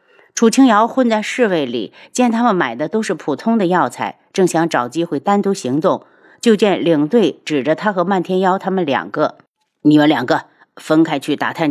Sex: female